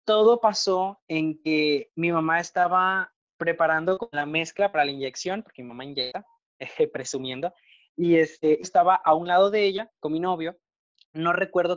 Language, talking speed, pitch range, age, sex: Spanish, 160 wpm, 145-185 Hz, 20-39, male